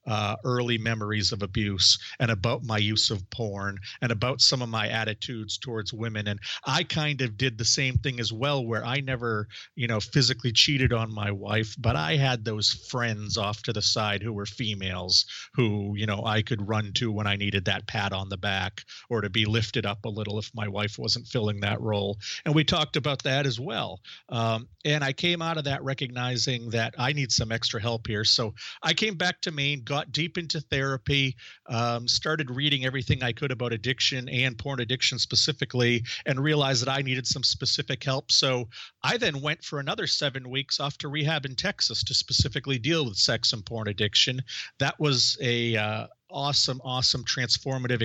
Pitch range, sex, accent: 110-140 Hz, male, American